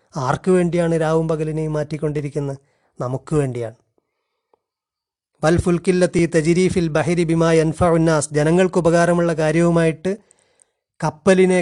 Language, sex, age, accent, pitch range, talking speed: Malayalam, male, 30-49, native, 155-180 Hz, 90 wpm